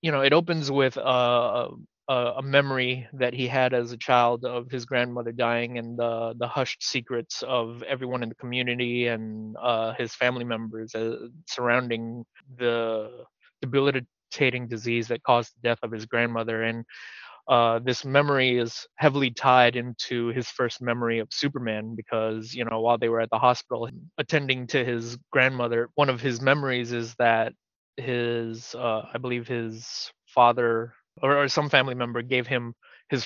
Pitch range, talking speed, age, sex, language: 115-130 Hz, 170 wpm, 20-39, male, English